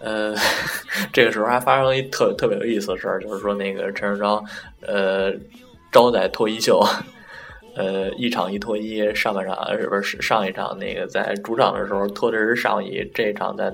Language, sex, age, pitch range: Chinese, male, 10-29, 100-115 Hz